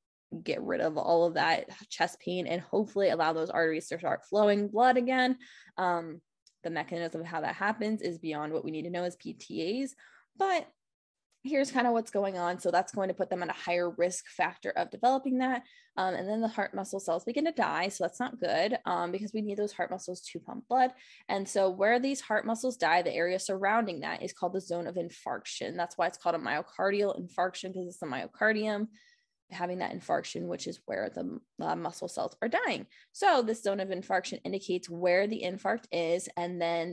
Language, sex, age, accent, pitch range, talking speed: English, female, 20-39, American, 175-220 Hz, 215 wpm